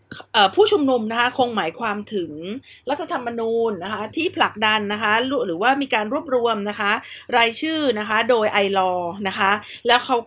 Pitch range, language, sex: 200-270 Hz, Thai, female